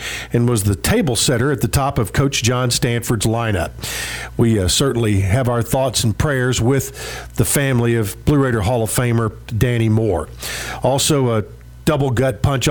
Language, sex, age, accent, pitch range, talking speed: English, male, 50-69, American, 115-135 Hz, 170 wpm